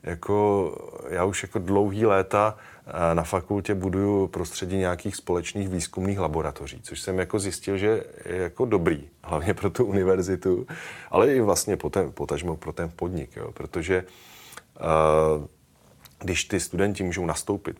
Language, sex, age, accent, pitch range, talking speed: Czech, male, 30-49, native, 80-90 Hz, 140 wpm